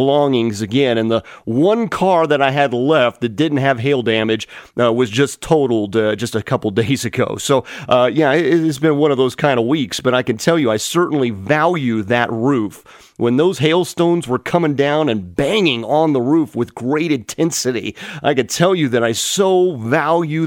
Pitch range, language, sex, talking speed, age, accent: 125-170 Hz, English, male, 200 wpm, 40-59, American